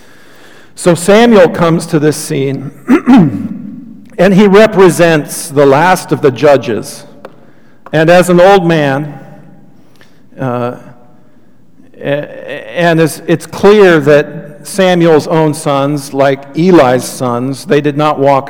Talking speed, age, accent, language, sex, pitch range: 110 wpm, 50-69, American, English, male, 125-155 Hz